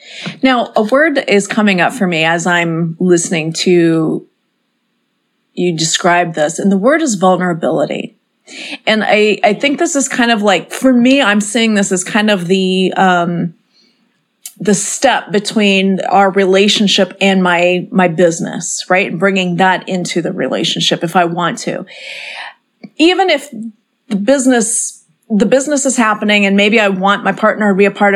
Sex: female